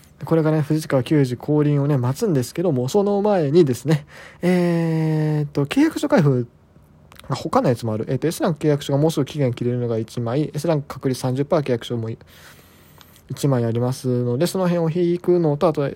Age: 20-39